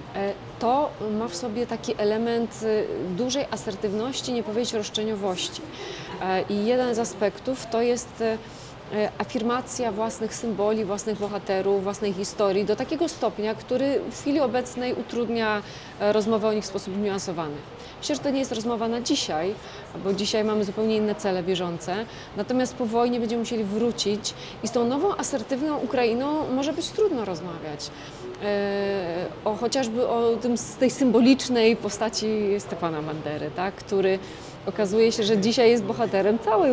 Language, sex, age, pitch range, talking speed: Polish, female, 30-49, 200-245 Hz, 145 wpm